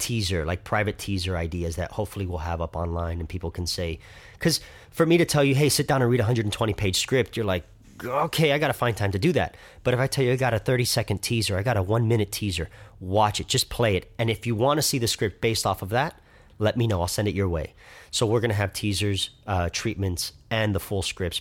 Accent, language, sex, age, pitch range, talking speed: American, English, male, 30-49, 90-110 Hz, 260 wpm